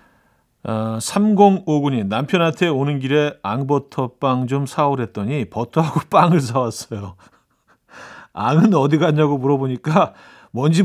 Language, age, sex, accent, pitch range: Korean, 40-59, male, native, 120-175 Hz